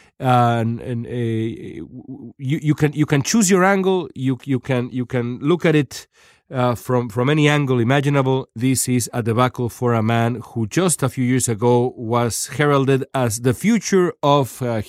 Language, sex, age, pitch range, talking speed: Spanish, male, 40-59, 120-145 Hz, 185 wpm